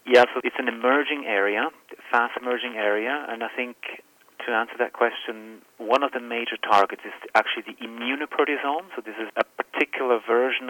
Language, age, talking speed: English, 40-59, 175 wpm